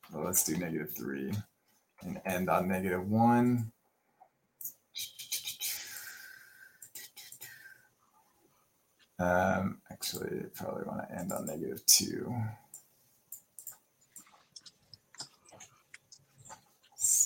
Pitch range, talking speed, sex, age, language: 100-120 Hz, 70 wpm, male, 20-39, English